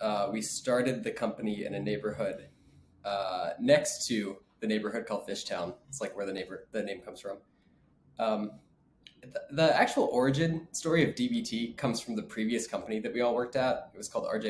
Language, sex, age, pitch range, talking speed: English, male, 20-39, 105-135 Hz, 190 wpm